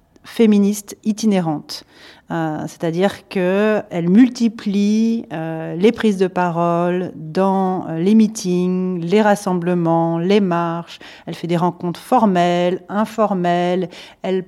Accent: French